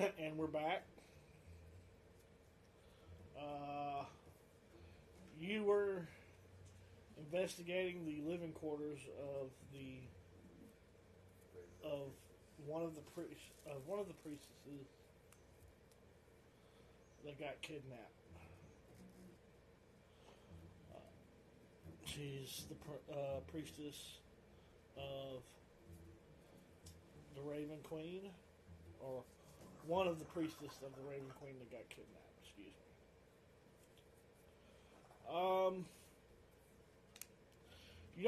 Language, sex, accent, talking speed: English, male, American, 80 wpm